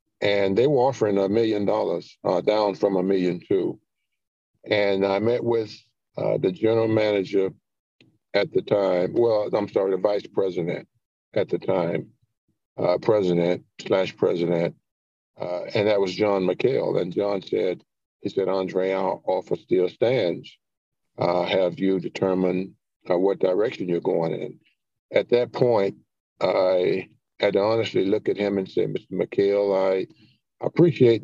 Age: 50-69